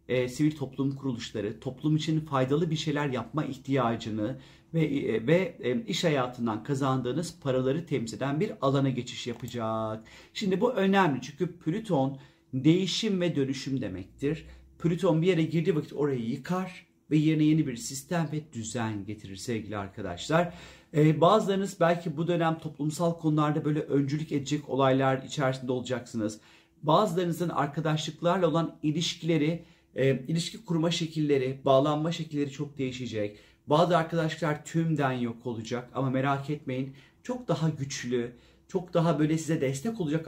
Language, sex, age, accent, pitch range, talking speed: Turkish, male, 40-59, native, 125-165 Hz, 135 wpm